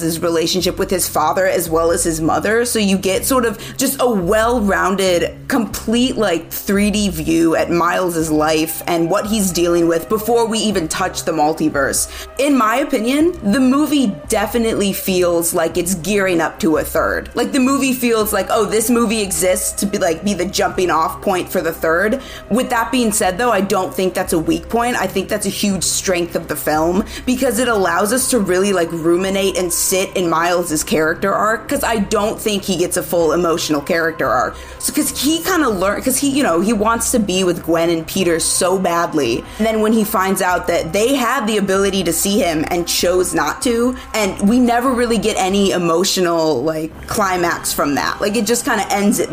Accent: American